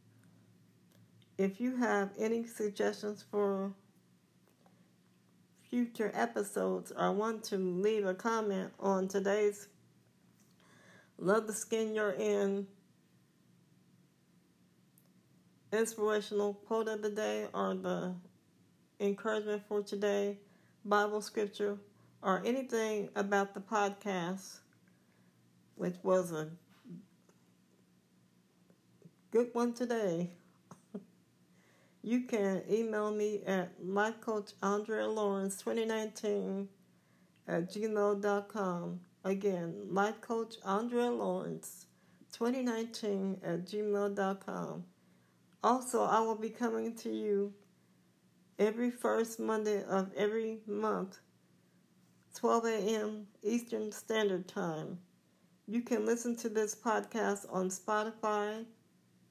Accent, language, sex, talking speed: American, English, female, 90 wpm